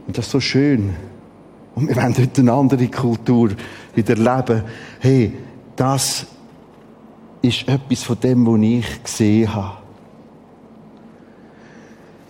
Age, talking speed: 50-69, 115 wpm